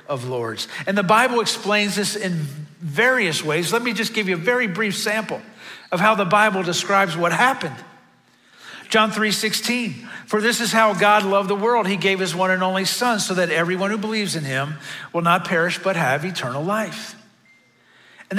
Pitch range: 165-210 Hz